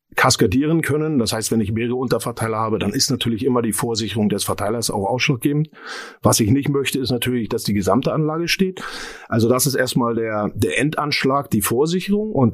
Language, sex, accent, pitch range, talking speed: German, male, German, 110-140 Hz, 190 wpm